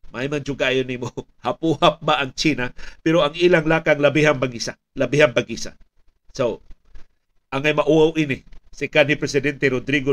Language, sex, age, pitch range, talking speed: Filipino, male, 50-69, 130-165 Hz, 155 wpm